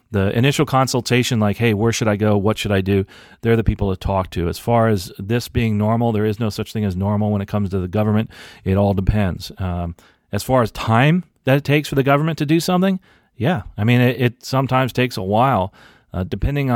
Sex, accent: male, American